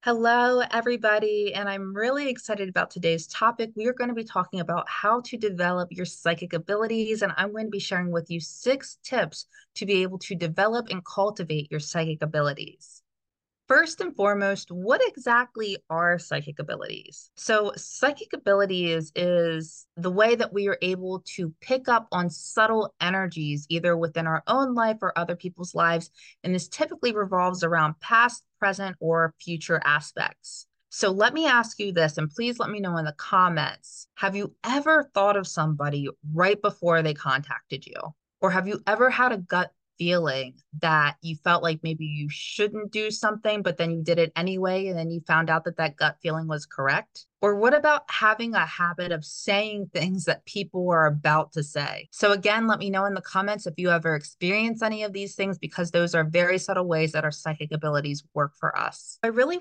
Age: 20-39